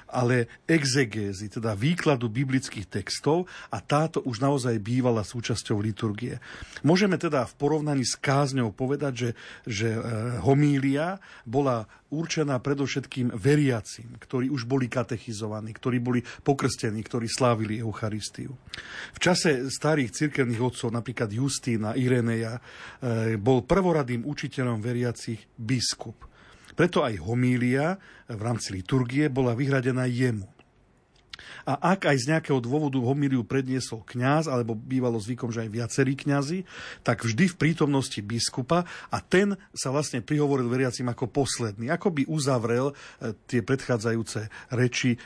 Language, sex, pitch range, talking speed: Slovak, male, 115-140 Hz, 125 wpm